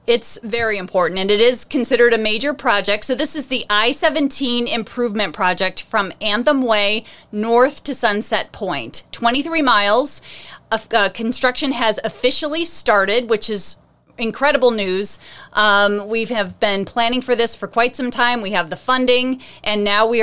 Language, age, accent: English, 30-49, American